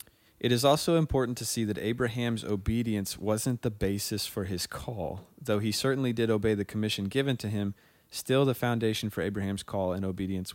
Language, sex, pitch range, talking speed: English, male, 100-115 Hz, 190 wpm